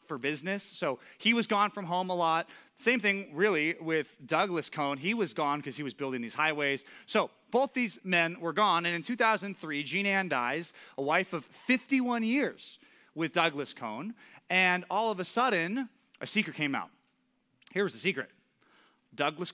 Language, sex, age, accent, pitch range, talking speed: English, male, 30-49, American, 145-230 Hz, 180 wpm